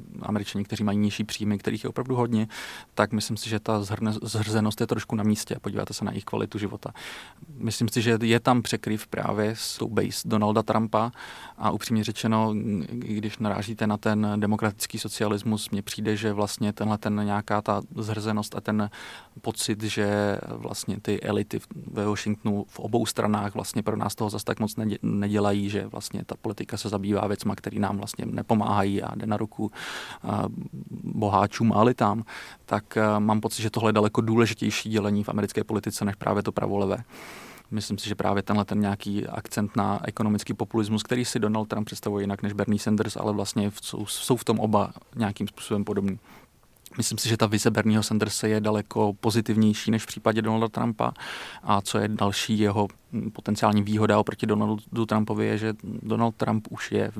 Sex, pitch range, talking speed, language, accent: male, 105-110 Hz, 180 wpm, Czech, native